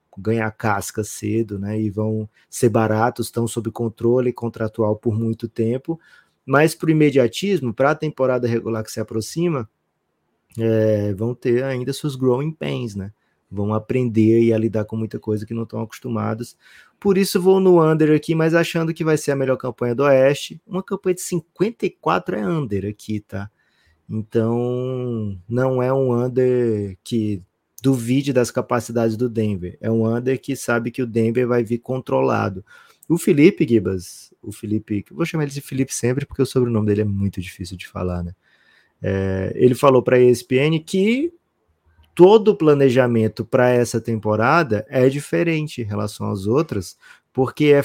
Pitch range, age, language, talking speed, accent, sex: 110-140 Hz, 20-39, Portuguese, 165 wpm, Brazilian, male